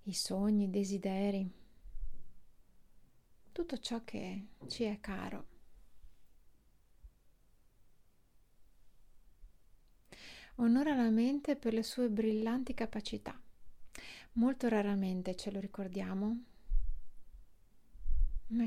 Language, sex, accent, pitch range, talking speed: Italian, female, native, 180-230 Hz, 75 wpm